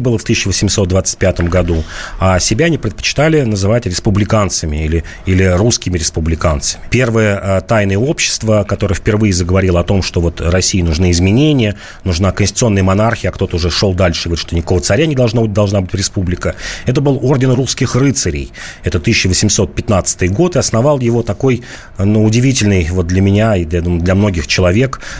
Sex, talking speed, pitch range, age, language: male, 160 wpm, 90-120 Hz, 30-49, Russian